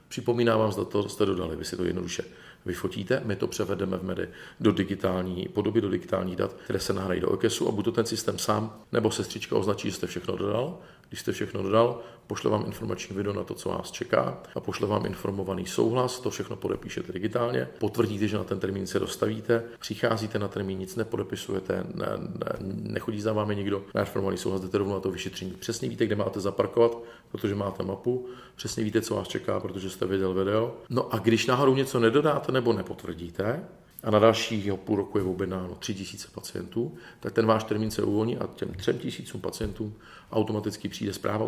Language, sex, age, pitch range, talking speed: Czech, male, 40-59, 95-115 Hz, 200 wpm